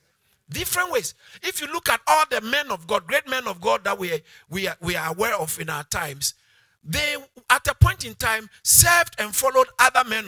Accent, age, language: Nigerian, 50-69, English